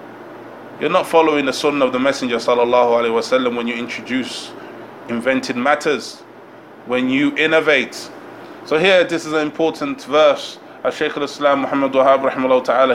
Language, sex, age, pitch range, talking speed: English, male, 20-39, 135-155 Hz, 140 wpm